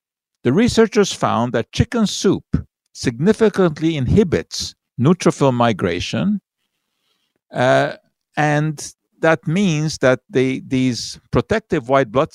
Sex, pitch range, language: male, 110-145 Hz, English